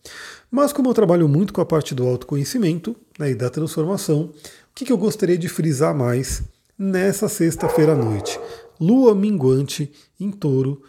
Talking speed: 160 wpm